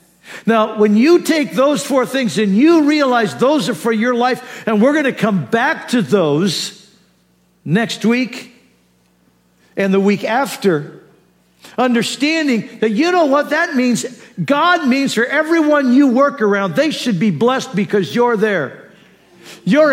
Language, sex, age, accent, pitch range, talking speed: English, male, 50-69, American, 190-265 Hz, 155 wpm